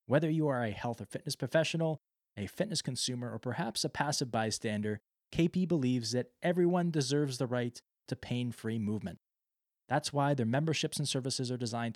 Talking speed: 170 wpm